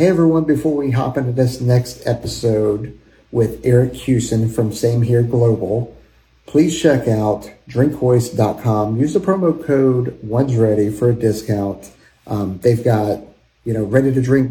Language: English